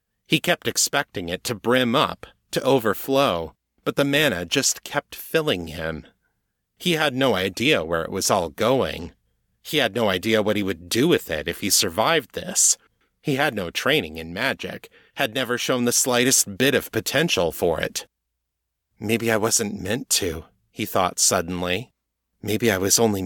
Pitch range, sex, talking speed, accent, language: 90-125 Hz, male, 175 wpm, American, English